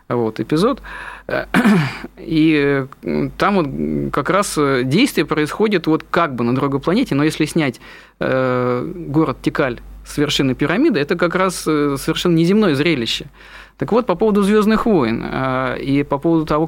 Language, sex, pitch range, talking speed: Russian, male, 130-180 Hz, 140 wpm